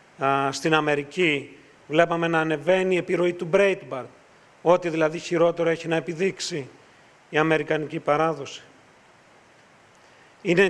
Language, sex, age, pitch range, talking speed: Greek, male, 40-59, 155-180 Hz, 105 wpm